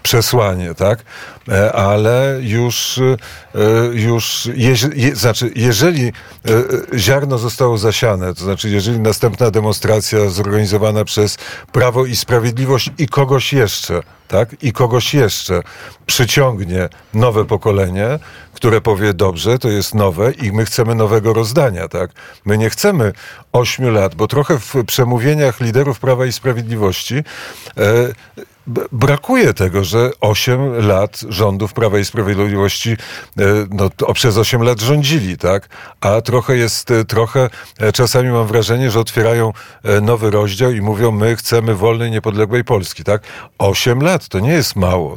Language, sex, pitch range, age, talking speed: Polish, male, 105-125 Hz, 50-69, 130 wpm